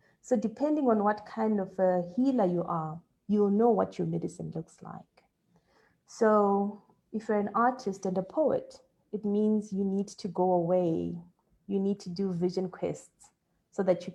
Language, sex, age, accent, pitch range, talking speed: English, female, 30-49, South African, 180-220 Hz, 175 wpm